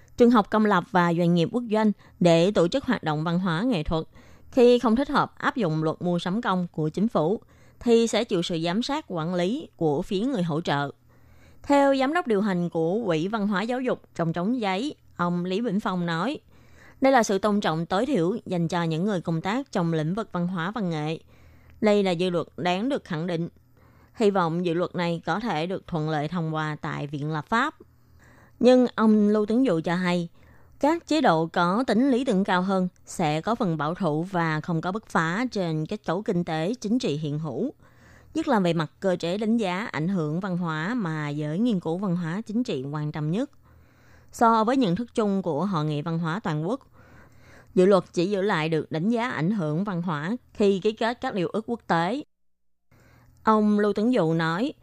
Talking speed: 220 wpm